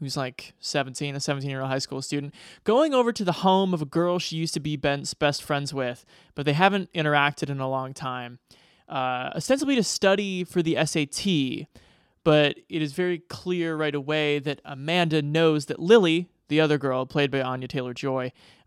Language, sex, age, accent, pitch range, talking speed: English, male, 20-39, American, 140-175 Hz, 185 wpm